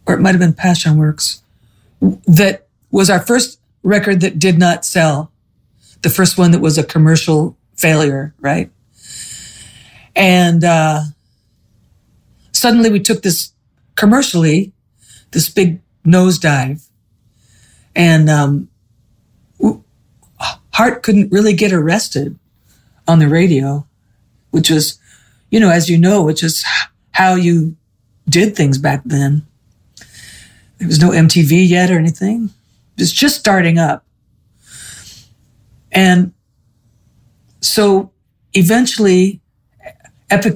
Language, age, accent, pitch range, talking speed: English, 50-69, American, 120-180 Hz, 110 wpm